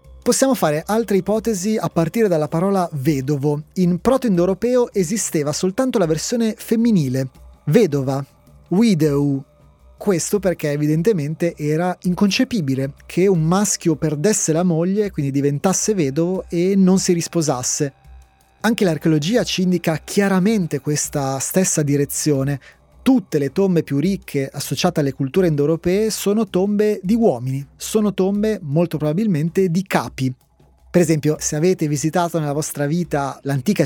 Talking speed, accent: 130 wpm, native